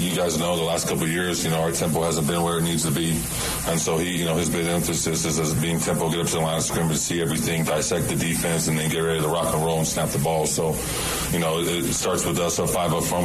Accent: American